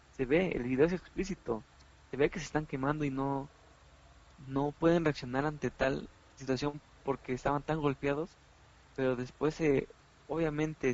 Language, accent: Spanish, Mexican